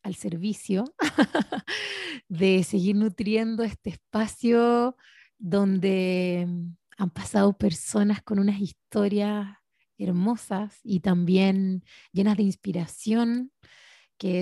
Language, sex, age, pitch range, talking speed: Spanish, female, 30-49, 190-225 Hz, 85 wpm